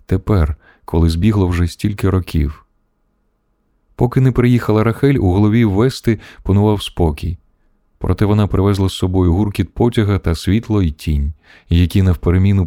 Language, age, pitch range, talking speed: Ukrainian, 20-39, 90-105 Hz, 135 wpm